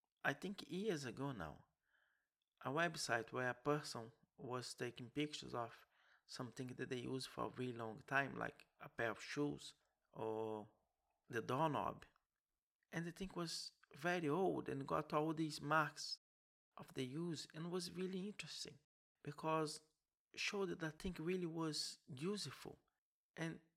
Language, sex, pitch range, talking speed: English, male, 130-170 Hz, 150 wpm